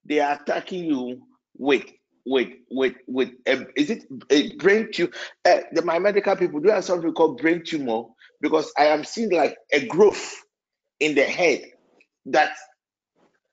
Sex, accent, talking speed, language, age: male, Nigerian, 160 wpm, English, 50-69